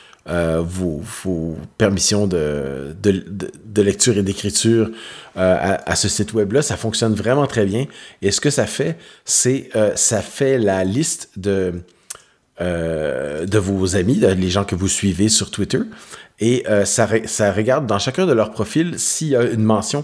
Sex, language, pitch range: male, French, 95-115 Hz